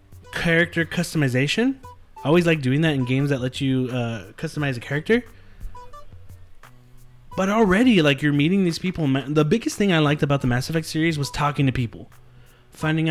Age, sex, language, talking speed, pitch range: 20-39, male, English, 175 wpm, 125-160 Hz